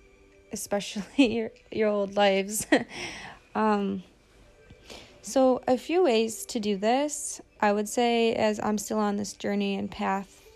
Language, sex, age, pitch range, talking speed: English, female, 20-39, 195-230 Hz, 135 wpm